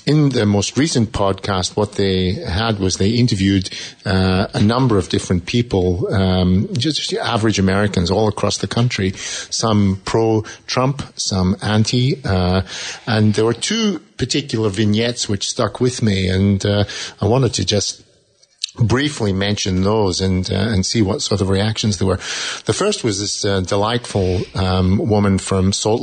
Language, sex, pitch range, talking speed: English, male, 95-110 Hz, 160 wpm